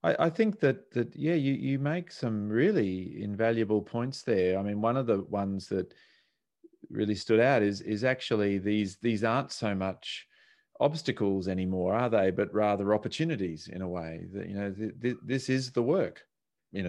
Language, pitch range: English, 100-130 Hz